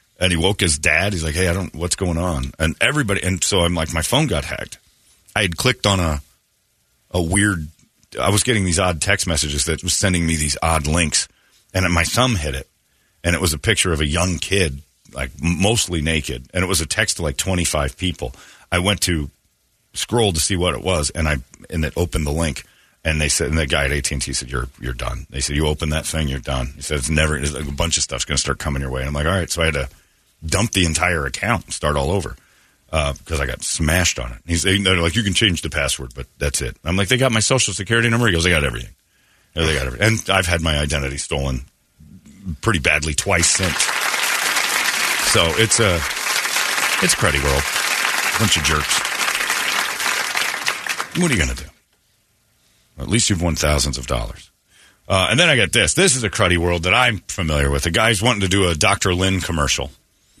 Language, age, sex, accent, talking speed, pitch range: English, 40-59, male, American, 230 wpm, 75-95 Hz